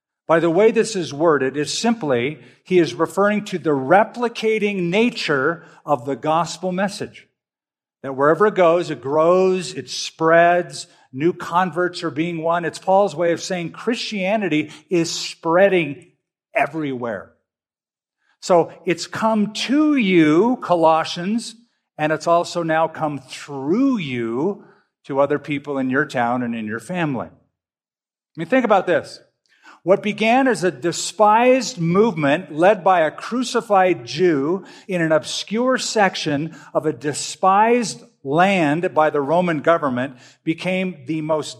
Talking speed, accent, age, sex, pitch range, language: 135 wpm, American, 50-69, male, 145-195 Hz, English